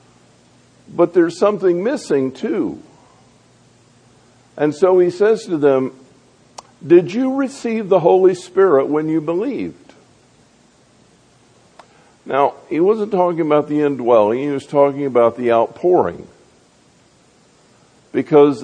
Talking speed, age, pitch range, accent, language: 110 wpm, 50-69, 130-180 Hz, American, English